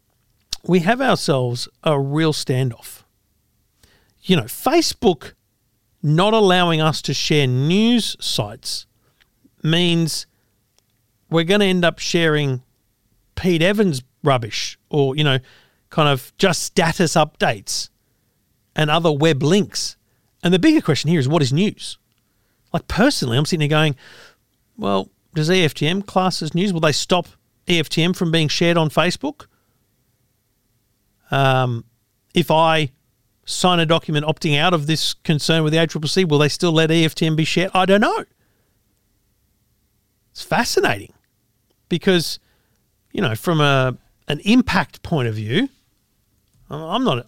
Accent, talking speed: Australian, 135 wpm